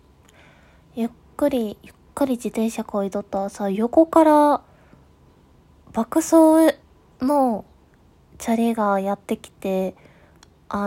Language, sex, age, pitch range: Japanese, female, 20-39, 205-275 Hz